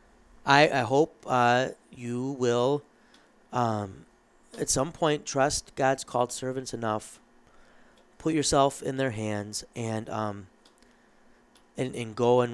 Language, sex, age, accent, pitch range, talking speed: English, male, 30-49, American, 110-130 Hz, 125 wpm